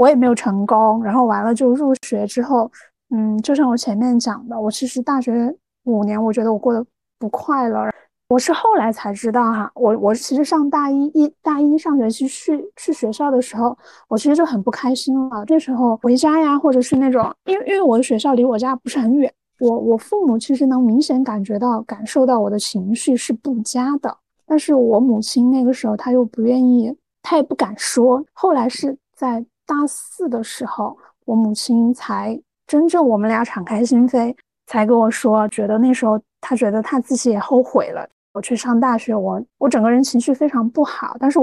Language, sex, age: Chinese, female, 20-39